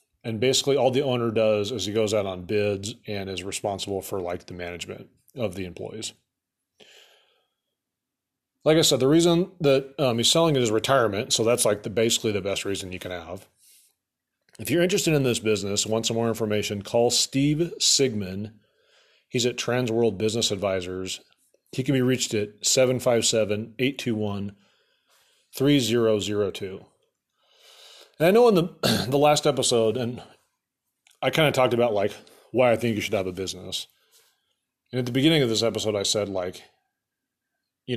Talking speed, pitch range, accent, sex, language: 165 wpm, 100-130 Hz, American, male, English